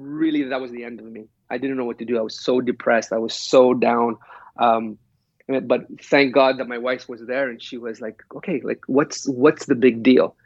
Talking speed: 235 wpm